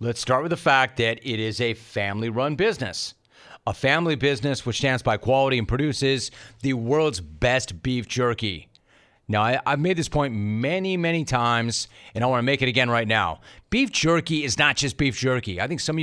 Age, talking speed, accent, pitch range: 40-59, 200 wpm, American, 120-145 Hz